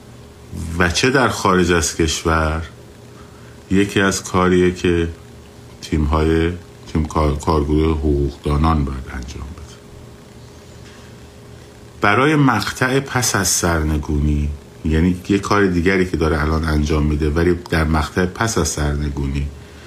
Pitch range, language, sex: 75-95 Hz, Persian, male